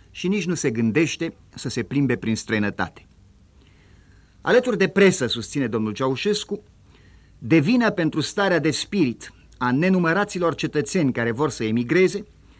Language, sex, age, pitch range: Romanian, male, 50-69, 110-175 Hz